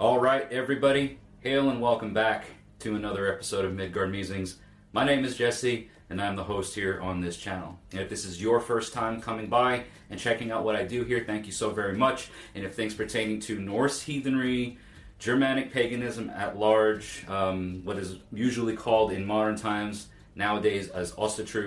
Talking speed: 185 wpm